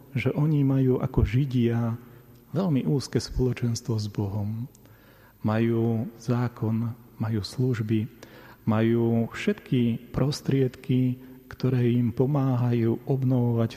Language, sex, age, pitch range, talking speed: Slovak, male, 40-59, 115-130 Hz, 90 wpm